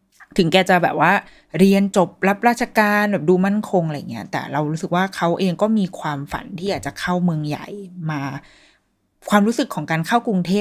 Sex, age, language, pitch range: female, 20-39, Thai, 160-205 Hz